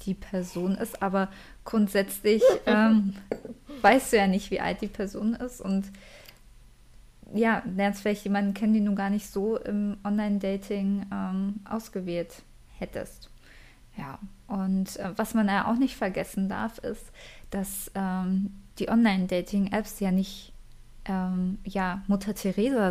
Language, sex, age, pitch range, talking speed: German, female, 20-39, 195-220 Hz, 135 wpm